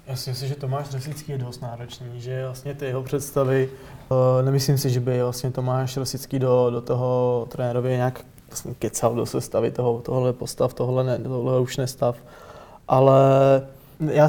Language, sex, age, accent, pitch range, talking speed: Czech, male, 20-39, native, 125-135 Hz, 170 wpm